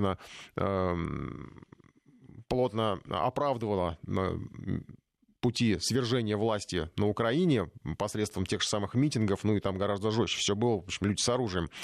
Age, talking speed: 20-39, 120 wpm